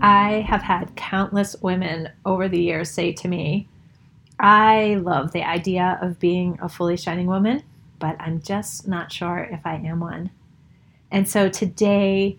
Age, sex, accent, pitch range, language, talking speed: 30-49, female, American, 165-190 Hz, English, 160 wpm